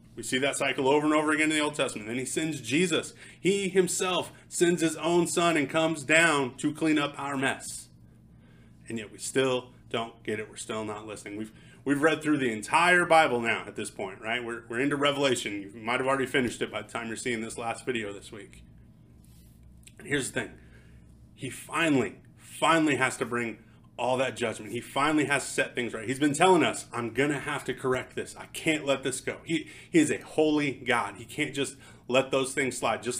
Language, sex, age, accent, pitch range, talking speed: English, male, 30-49, American, 110-145 Hz, 220 wpm